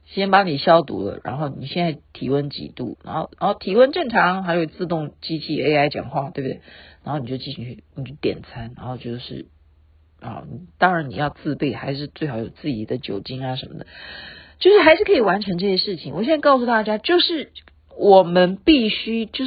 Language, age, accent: Chinese, 50-69, native